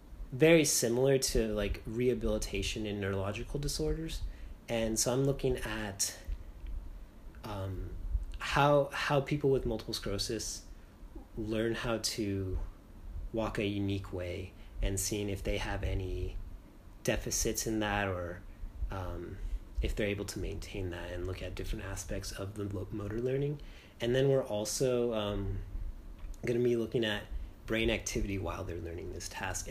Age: 30-49